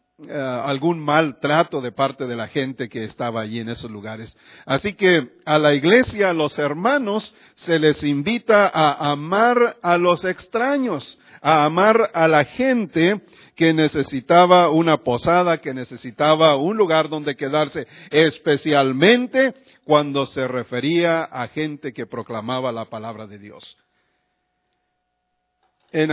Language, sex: English, male